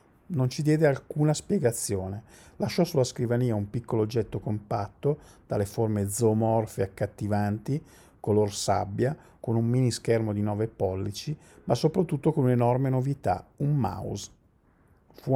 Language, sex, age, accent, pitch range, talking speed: Italian, male, 50-69, native, 110-135 Hz, 135 wpm